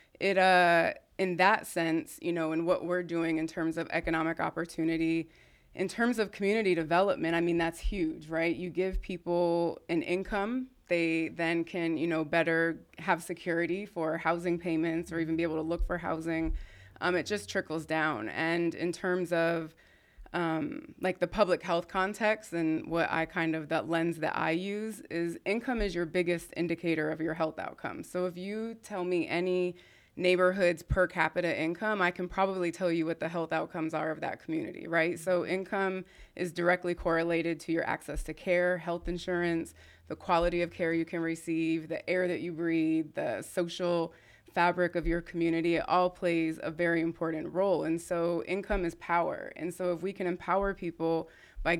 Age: 20-39